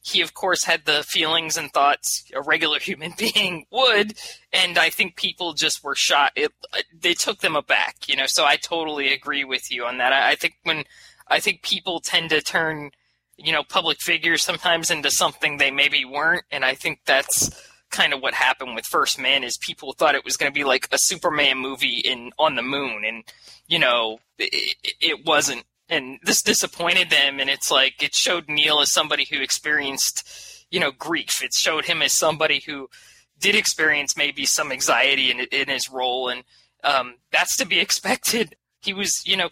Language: English